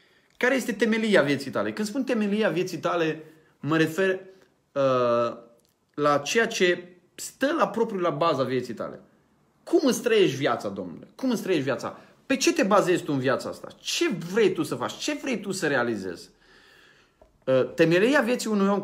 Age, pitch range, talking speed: 20-39, 155-205 Hz, 170 wpm